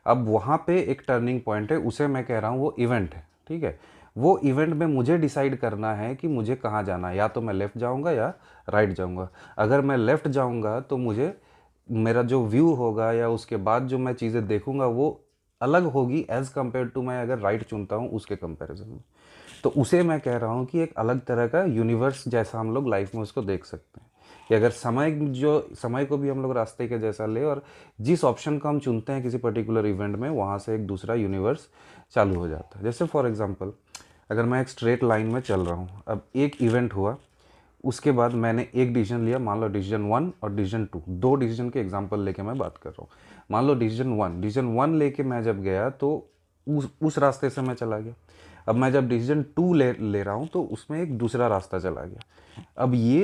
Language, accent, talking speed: Hindi, native, 225 wpm